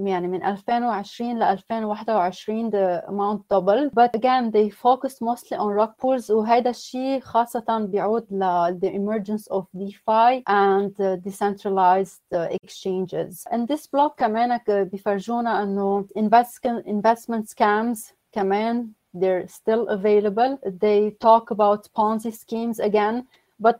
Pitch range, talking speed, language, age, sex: 200-235 Hz, 120 wpm, English, 30-49, female